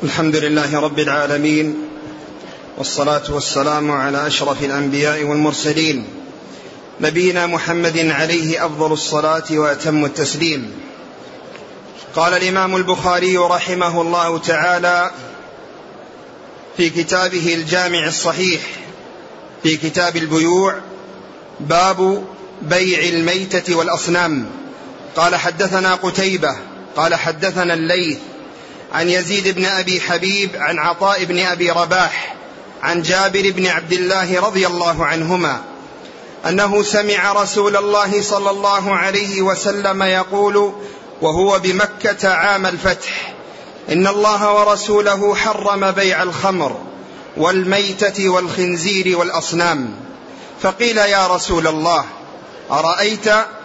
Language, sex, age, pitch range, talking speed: Arabic, male, 30-49, 165-195 Hz, 95 wpm